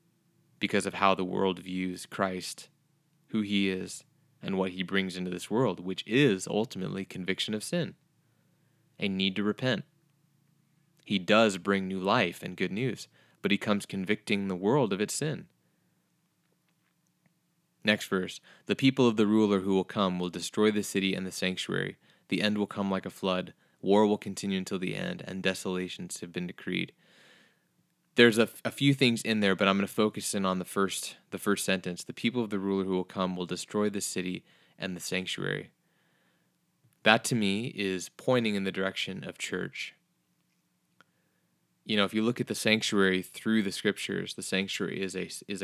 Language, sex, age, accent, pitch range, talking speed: English, male, 20-39, American, 95-115 Hz, 185 wpm